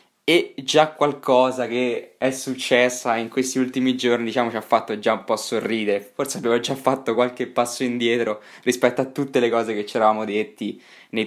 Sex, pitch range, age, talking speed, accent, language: male, 115-135 Hz, 20-39, 185 wpm, native, Italian